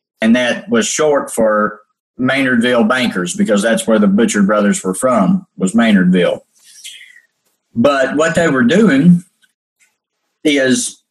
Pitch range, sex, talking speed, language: 130-215 Hz, male, 125 wpm, English